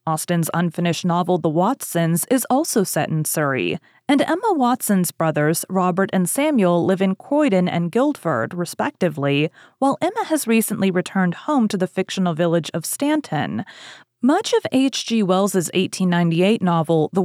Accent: American